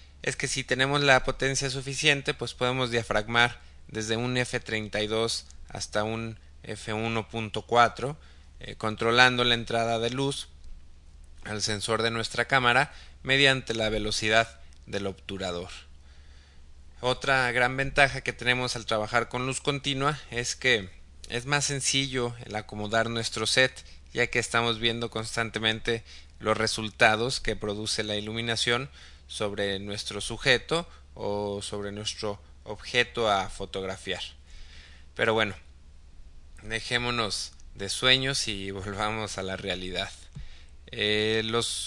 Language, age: Spanish, 20-39